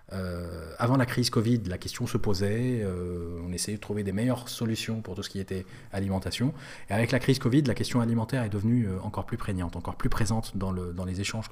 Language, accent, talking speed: French, French, 225 wpm